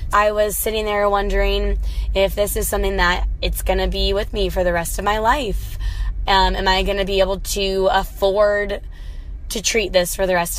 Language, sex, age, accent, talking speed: English, female, 10-29, American, 210 wpm